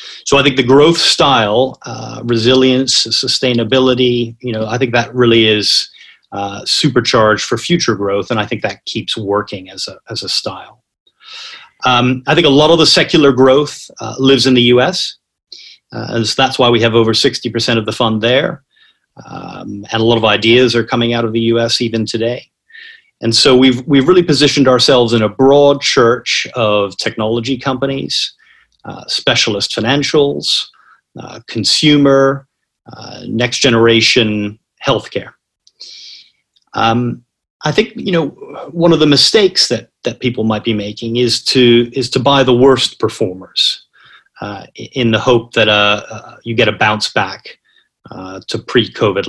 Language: English